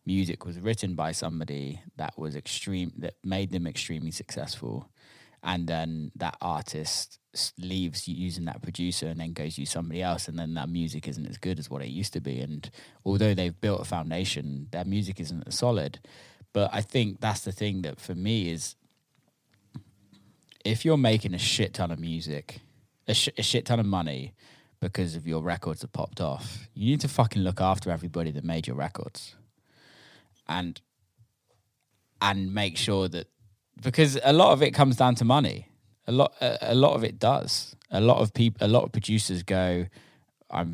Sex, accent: male, British